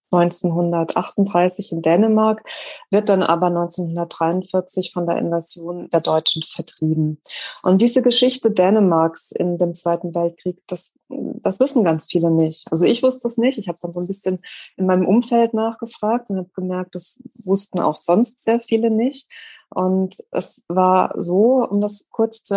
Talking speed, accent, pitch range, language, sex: 160 wpm, German, 175-215 Hz, German, female